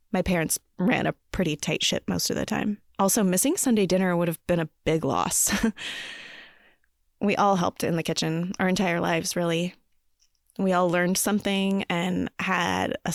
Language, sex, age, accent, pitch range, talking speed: English, female, 20-39, American, 175-205 Hz, 175 wpm